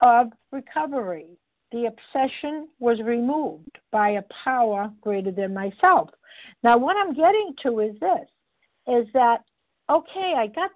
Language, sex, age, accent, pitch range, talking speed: English, female, 60-79, American, 225-290 Hz, 135 wpm